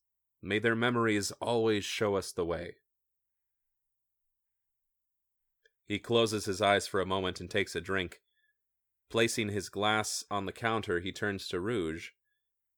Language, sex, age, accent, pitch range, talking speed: English, male, 30-49, American, 95-120 Hz, 135 wpm